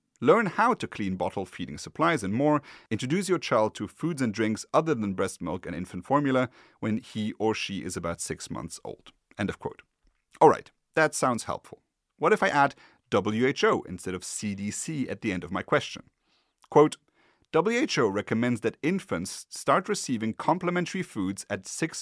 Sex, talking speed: male, 175 wpm